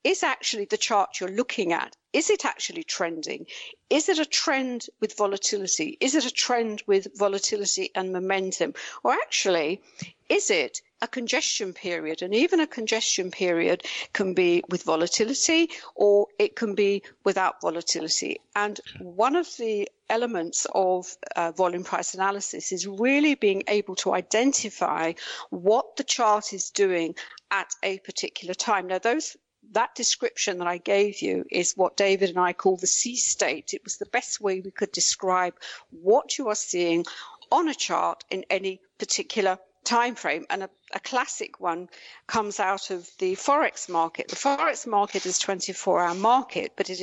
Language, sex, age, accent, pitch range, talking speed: English, female, 50-69, British, 185-255 Hz, 160 wpm